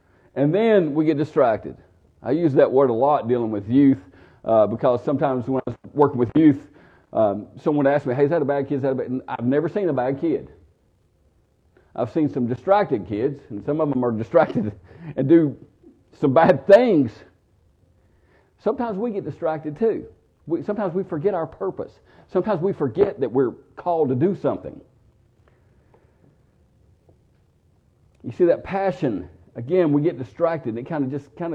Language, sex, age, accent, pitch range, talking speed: English, male, 50-69, American, 120-185 Hz, 165 wpm